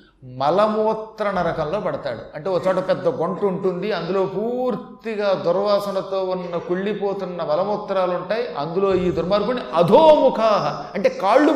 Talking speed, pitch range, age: 115 wpm, 170-230 Hz, 30-49